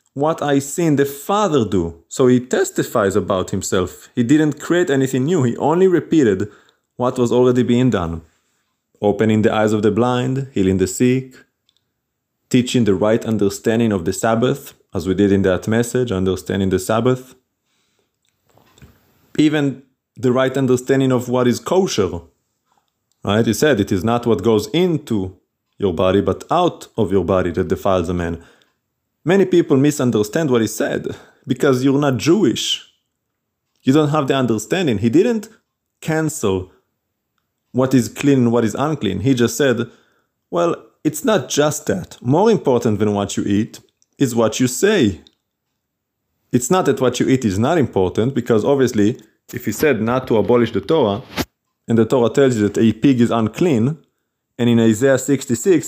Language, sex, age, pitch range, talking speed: English, male, 30-49, 105-135 Hz, 165 wpm